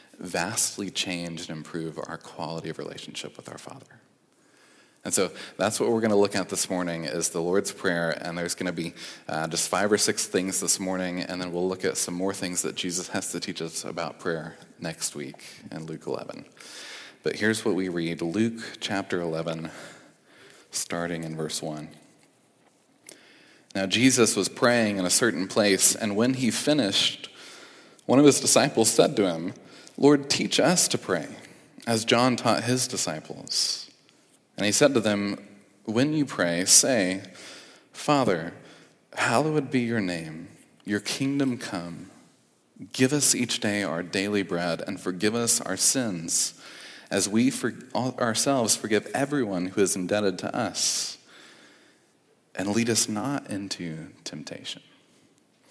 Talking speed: 155 wpm